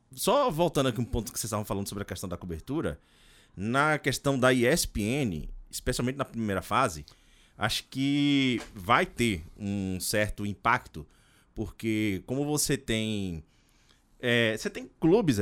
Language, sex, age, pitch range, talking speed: Portuguese, male, 20-39, 95-130 Hz, 140 wpm